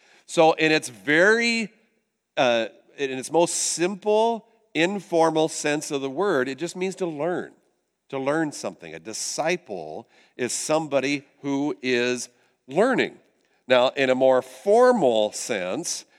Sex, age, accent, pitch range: male, 50-69, American, 115-155 Hz